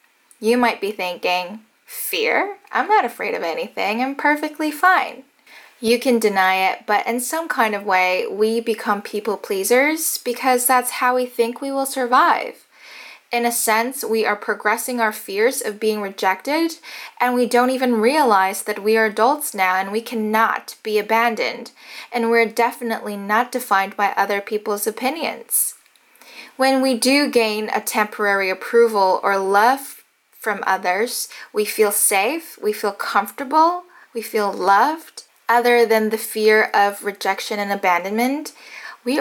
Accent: American